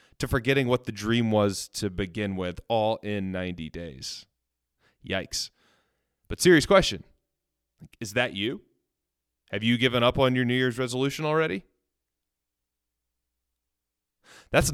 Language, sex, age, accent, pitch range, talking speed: English, male, 30-49, American, 100-135 Hz, 125 wpm